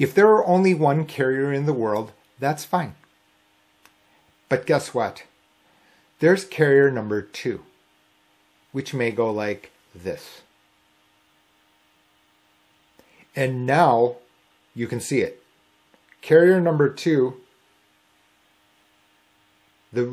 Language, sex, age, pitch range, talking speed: English, male, 40-59, 100-135 Hz, 100 wpm